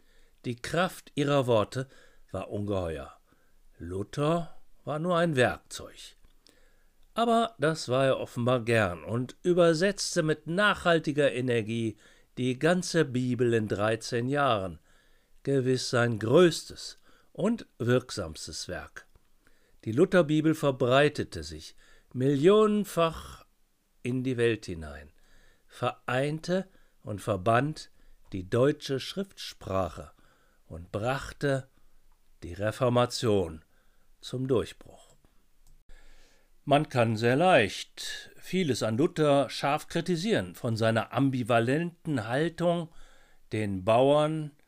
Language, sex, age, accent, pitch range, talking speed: German, male, 60-79, German, 110-155 Hz, 95 wpm